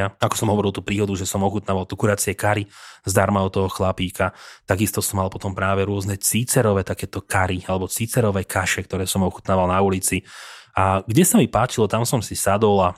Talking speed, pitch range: 195 wpm, 95-110 Hz